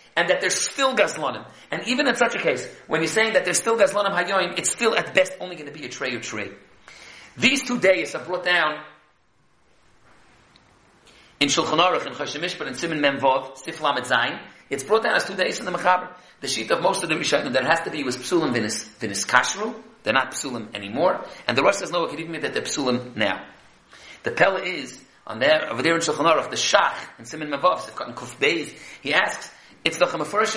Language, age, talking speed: English, 40-59, 210 wpm